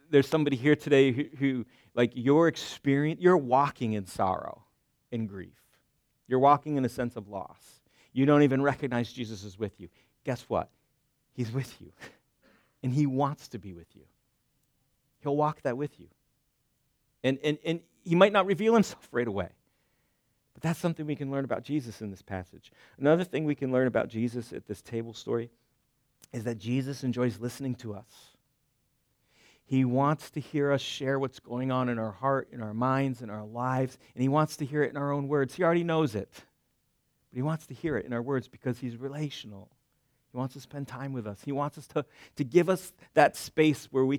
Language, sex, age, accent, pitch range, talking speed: English, male, 40-59, American, 120-145 Hz, 200 wpm